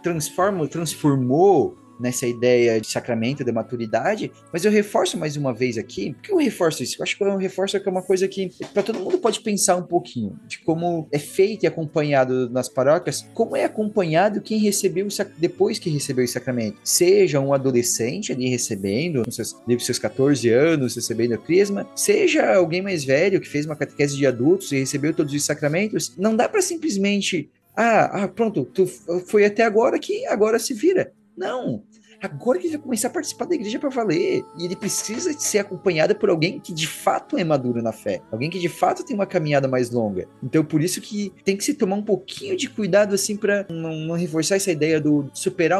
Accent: Brazilian